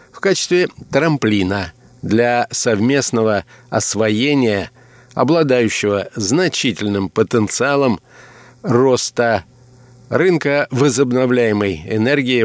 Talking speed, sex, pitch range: 65 wpm, male, 110-140 Hz